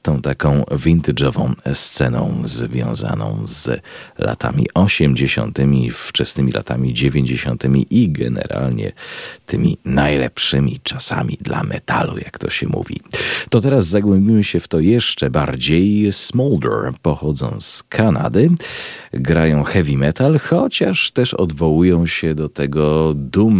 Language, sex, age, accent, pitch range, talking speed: Polish, male, 40-59, native, 65-85 Hz, 110 wpm